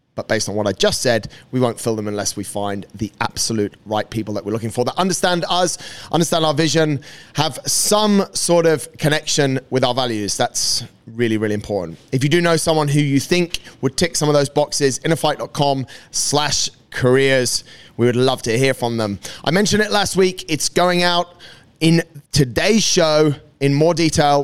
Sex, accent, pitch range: male, British, 125-160 Hz